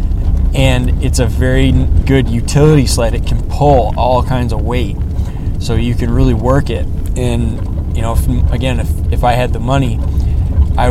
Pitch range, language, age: 85-115 Hz, English, 20-39